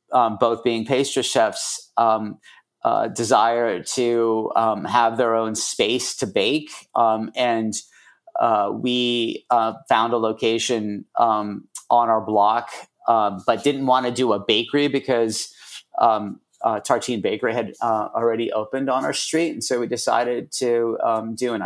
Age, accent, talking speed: 30-49, American, 160 wpm